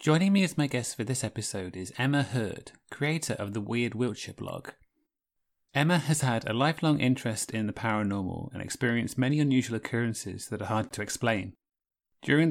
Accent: British